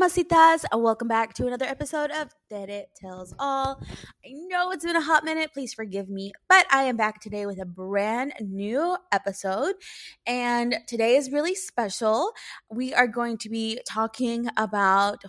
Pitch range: 195-260 Hz